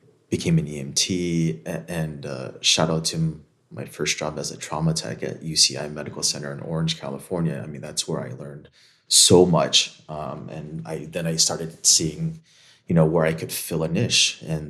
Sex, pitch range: male, 75-85 Hz